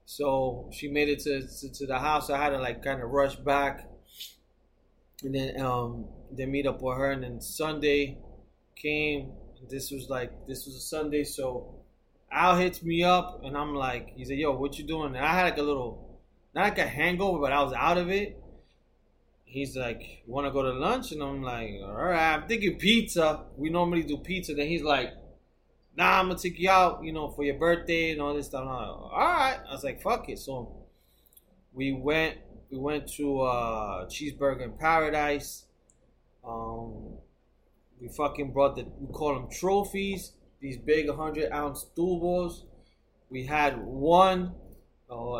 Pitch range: 130-160 Hz